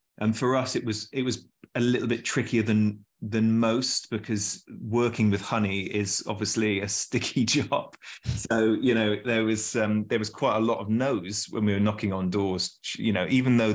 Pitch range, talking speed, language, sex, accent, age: 95-105 Hz, 200 wpm, English, male, British, 20-39